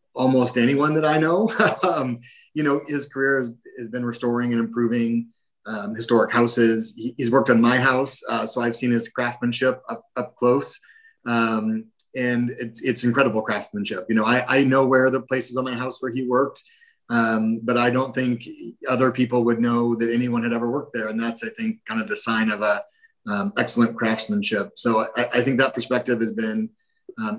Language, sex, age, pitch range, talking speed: English, male, 30-49, 115-135 Hz, 200 wpm